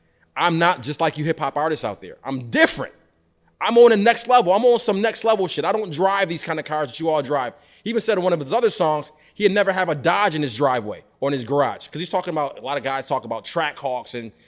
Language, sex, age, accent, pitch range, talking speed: English, male, 20-39, American, 145-185 Hz, 280 wpm